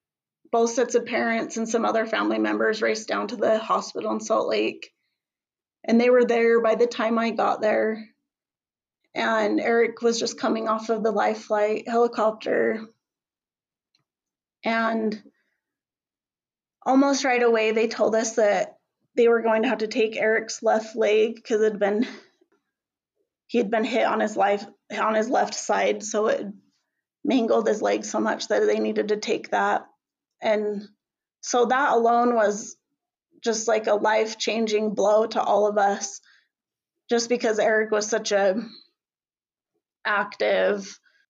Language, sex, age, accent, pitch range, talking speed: English, female, 30-49, American, 210-240 Hz, 155 wpm